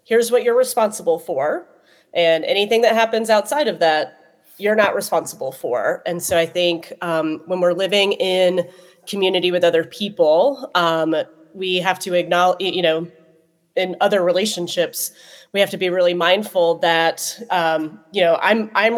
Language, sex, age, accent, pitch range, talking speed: English, female, 30-49, American, 165-195 Hz, 160 wpm